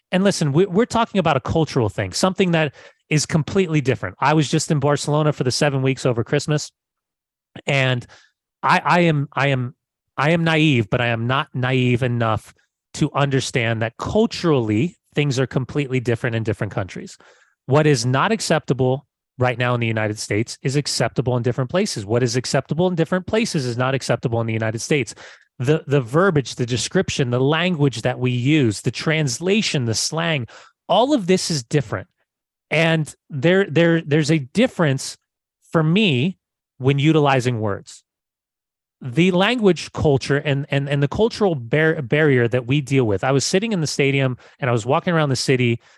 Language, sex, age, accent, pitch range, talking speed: English, male, 30-49, American, 125-160 Hz, 175 wpm